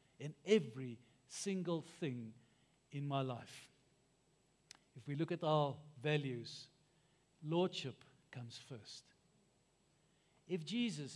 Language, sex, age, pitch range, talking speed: English, male, 60-79, 145-220 Hz, 95 wpm